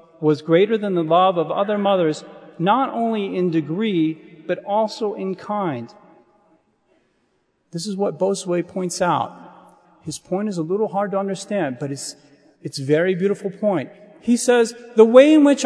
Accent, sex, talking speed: American, male, 165 wpm